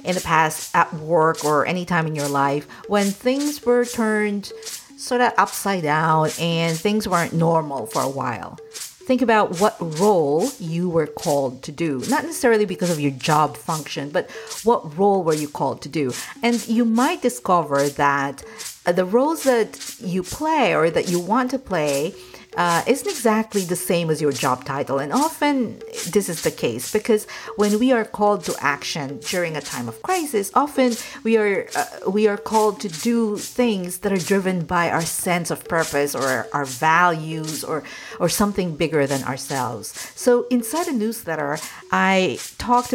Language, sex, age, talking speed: English, female, 50-69, 175 wpm